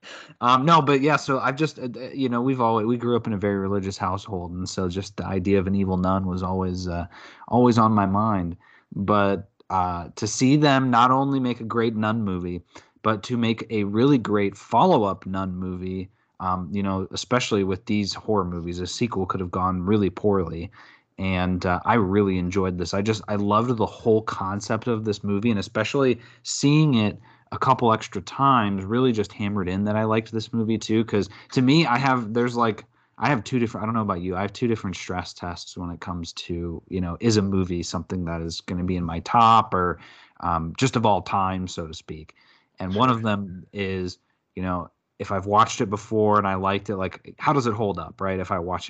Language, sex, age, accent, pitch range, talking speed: English, male, 30-49, American, 90-115 Hz, 220 wpm